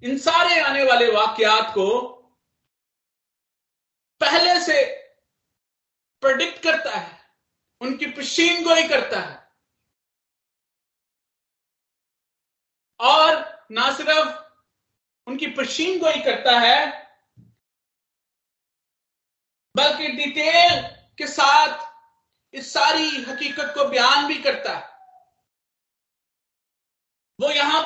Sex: male